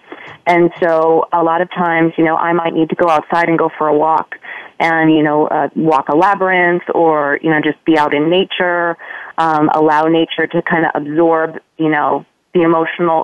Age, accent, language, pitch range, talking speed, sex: 30-49, American, English, 160-185 Hz, 205 wpm, female